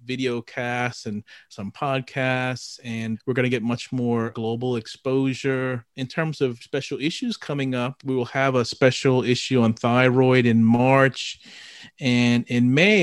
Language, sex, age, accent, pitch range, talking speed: English, male, 30-49, American, 115-135 Hz, 155 wpm